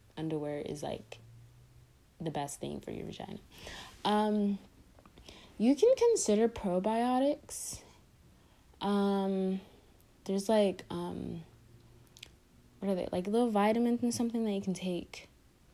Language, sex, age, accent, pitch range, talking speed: English, female, 20-39, American, 155-195 Hz, 120 wpm